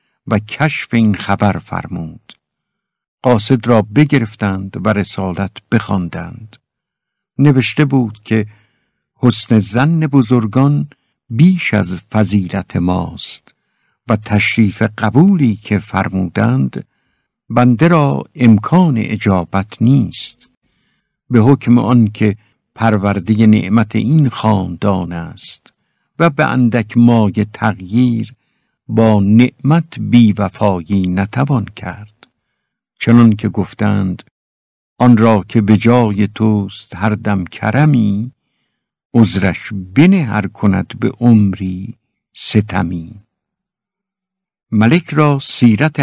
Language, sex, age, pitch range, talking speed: Persian, male, 60-79, 100-125 Hz, 95 wpm